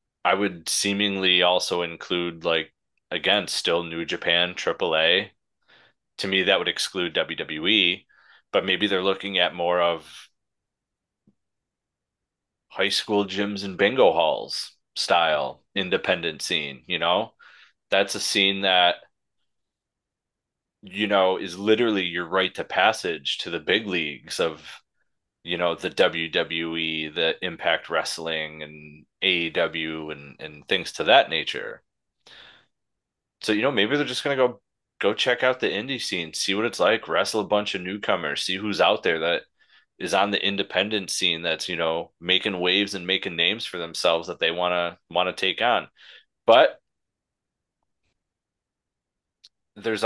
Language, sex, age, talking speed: English, male, 30-49, 145 wpm